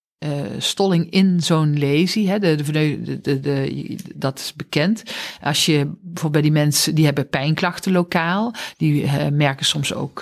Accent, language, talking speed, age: Dutch, Dutch, 170 wpm, 40-59